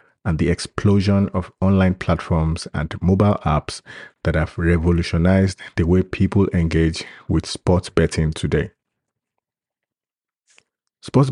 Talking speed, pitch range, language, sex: 110 wpm, 90-105 Hz, English, male